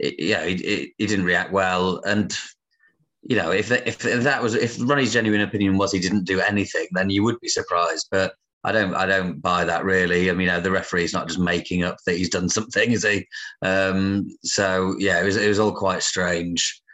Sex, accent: male, British